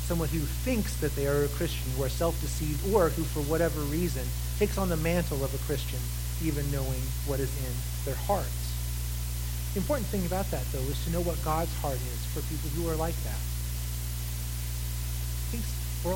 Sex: male